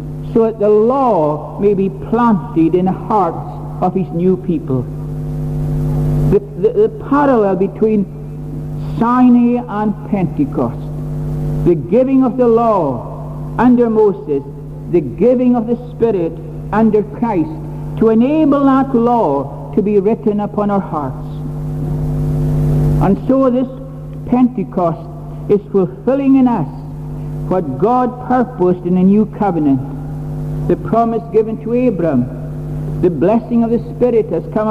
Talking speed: 125 wpm